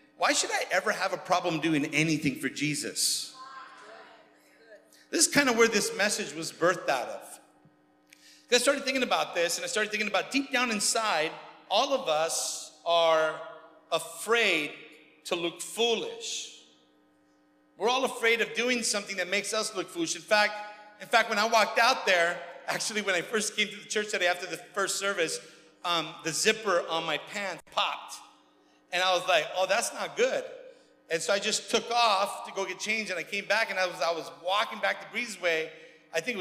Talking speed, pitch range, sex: 195 wpm, 165-230 Hz, male